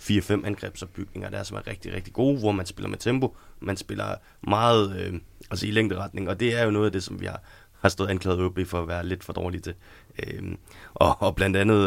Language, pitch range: Danish, 90-105 Hz